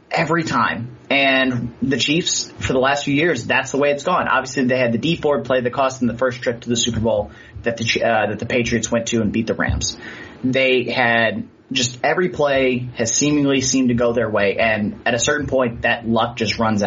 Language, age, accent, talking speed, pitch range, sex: English, 30-49, American, 230 wpm, 115-140 Hz, male